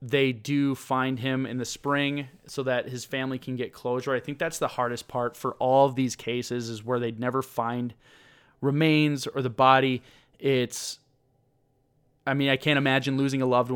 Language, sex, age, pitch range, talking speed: English, male, 20-39, 125-140 Hz, 190 wpm